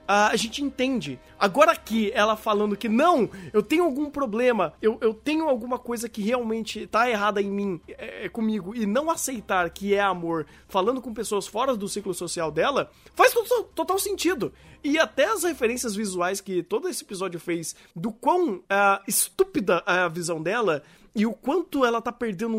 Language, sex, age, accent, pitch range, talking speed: Portuguese, male, 20-39, Brazilian, 195-270 Hz, 180 wpm